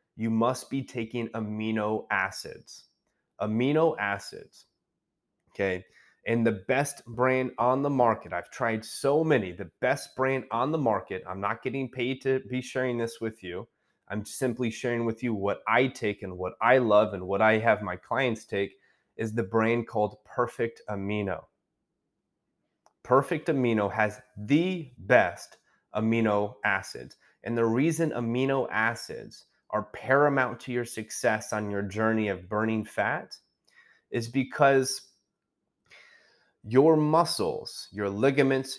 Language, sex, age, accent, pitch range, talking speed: English, male, 30-49, American, 105-130 Hz, 140 wpm